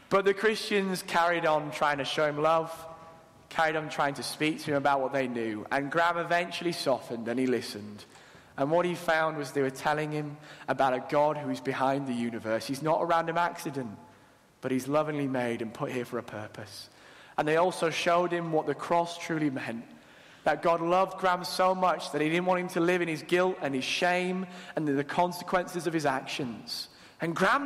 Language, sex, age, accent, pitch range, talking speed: English, male, 20-39, British, 135-185 Hz, 210 wpm